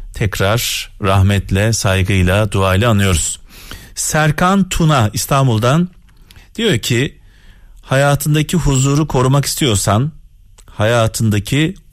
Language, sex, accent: Turkish, male, native